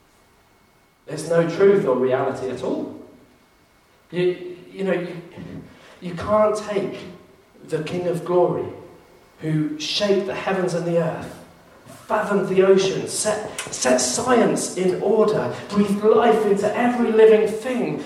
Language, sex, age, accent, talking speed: English, male, 40-59, British, 130 wpm